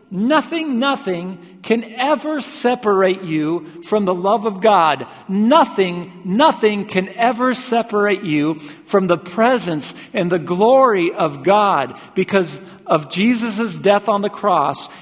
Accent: American